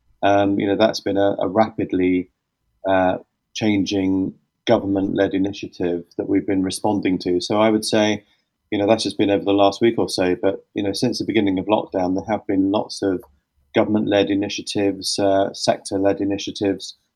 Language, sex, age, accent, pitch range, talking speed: English, male, 30-49, British, 95-110 Hz, 175 wpm